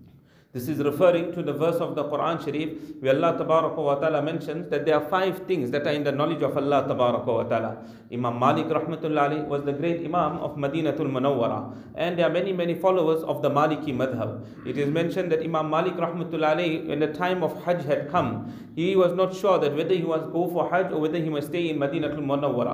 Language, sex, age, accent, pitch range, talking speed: English, male, 40-59, Indian, 145-185 Hz, 210 wpm